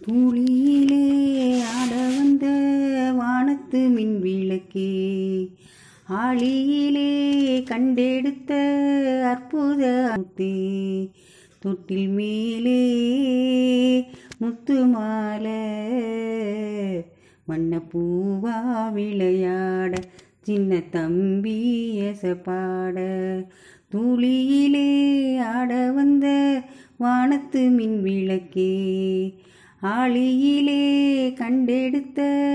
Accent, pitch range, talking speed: native, 190-280 Hz, 45 wpm